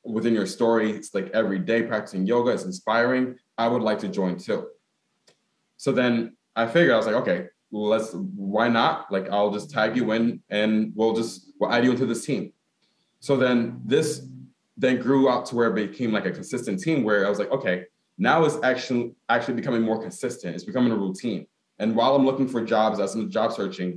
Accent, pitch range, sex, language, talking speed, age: American, 100-125 Hz, male, English, 210 wpm, 20-39